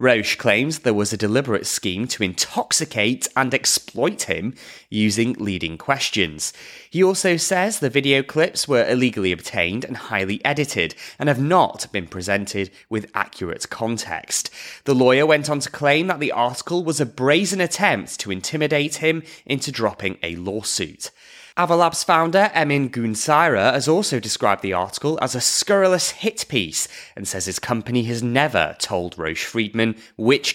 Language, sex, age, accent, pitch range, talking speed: English, male, 20-39, British, 100-160 Hz, 155 wpm